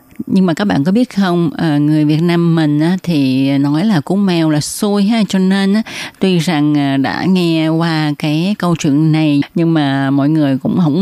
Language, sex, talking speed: Vietnamese, female, 190 wpm